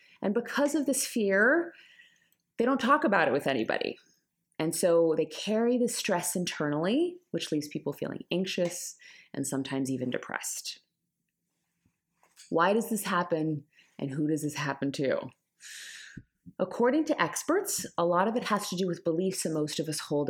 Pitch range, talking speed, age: 155-225 Hz, 165 wpm, 30-49